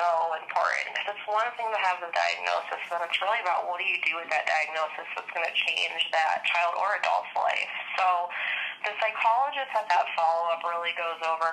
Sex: female